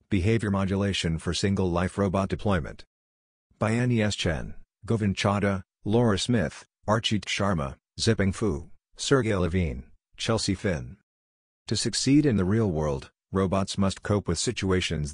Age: 50-69